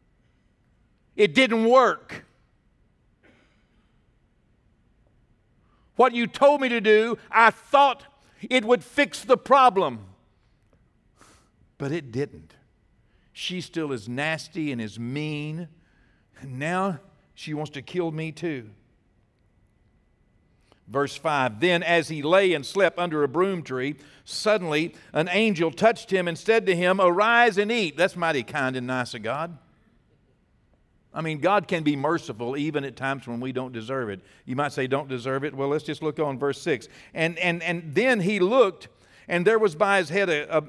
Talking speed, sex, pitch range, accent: 155 wpm, male, 130-180 Hz, American